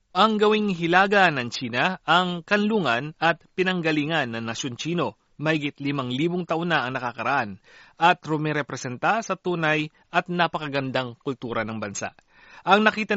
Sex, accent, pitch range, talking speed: male, native, 130-185 Hz, 135 wpm